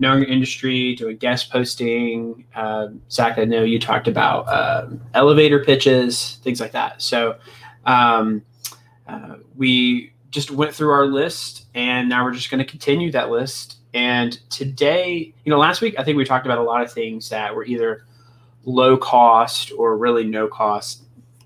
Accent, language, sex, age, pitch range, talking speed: American, English, male, 20-39, 120-140 Hz, 170 wpm